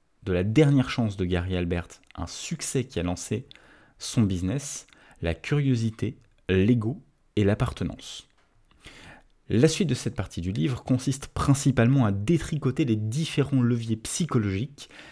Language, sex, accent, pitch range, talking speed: French, male, French, 100-135 Hz, 135 wpm